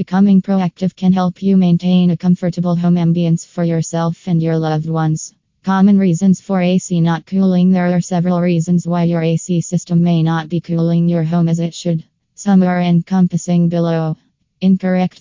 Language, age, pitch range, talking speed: English, 20-39, 165-175 Hz, 175 wpm